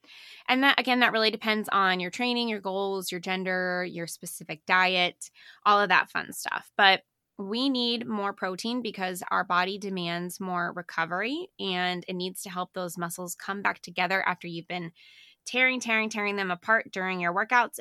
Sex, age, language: female, 20-39, English